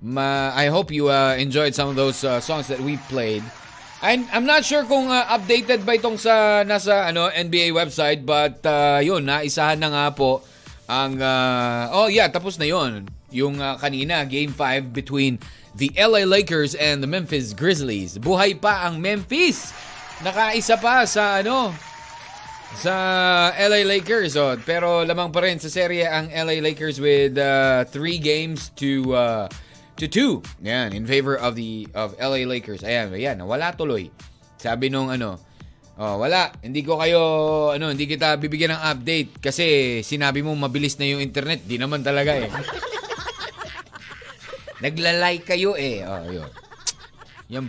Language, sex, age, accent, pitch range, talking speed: Filipino, male, 20-39, native, 135-185 Hz, 160 wpm